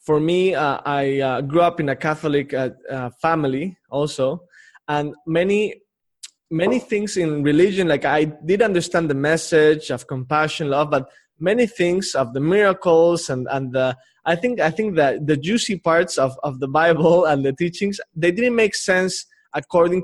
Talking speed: 175 wpm